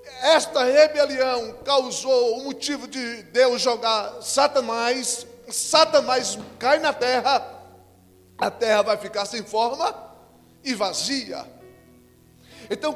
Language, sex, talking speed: Portuguese, male, 100 wpm